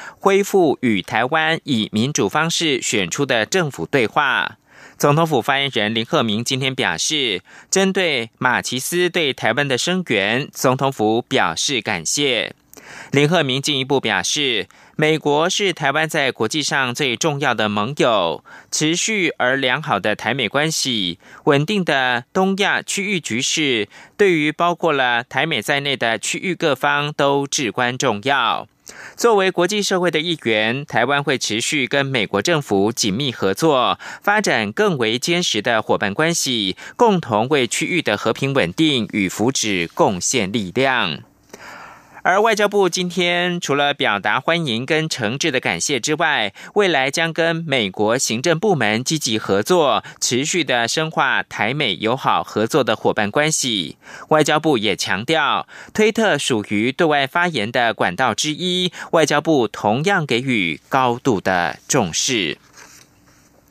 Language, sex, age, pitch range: German, male, 20-39, 120-170 Hz